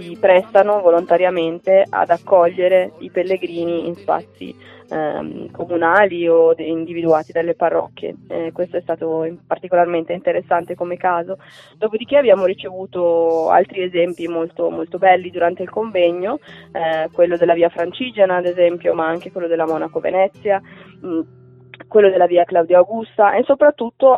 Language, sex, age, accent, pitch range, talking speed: Italian, female, 20-39, native, 170-195 Hz, 135 wpm